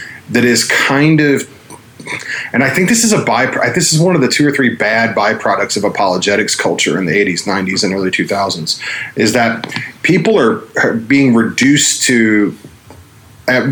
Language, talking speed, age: English, 175 wpm, 30-49